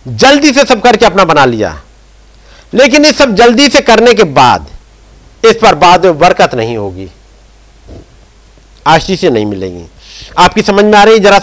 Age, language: 50-69, Hindi